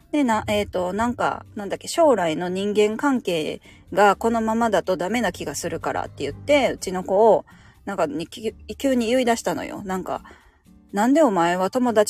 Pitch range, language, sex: 205-300 Hz, Japanese, female